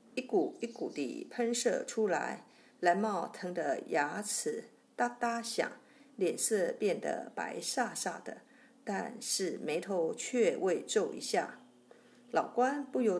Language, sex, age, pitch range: Chinese, female, 50-69, 215-250 Hz